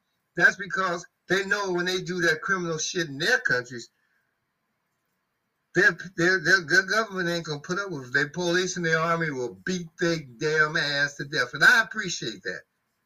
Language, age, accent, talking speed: English, 60-79, American, 185 wpm